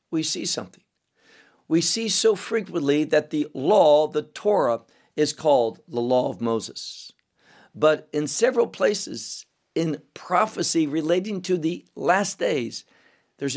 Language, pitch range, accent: English, 140-175 Hz, American